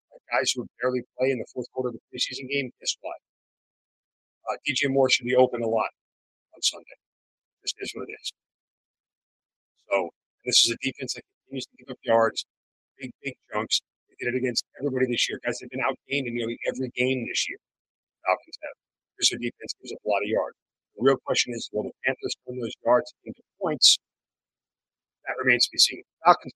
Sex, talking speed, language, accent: male, 215 wpm, English, American